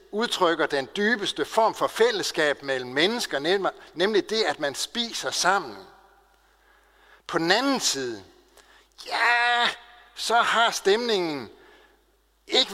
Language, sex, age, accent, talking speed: Danish, male, 60-79, native, 110 wpm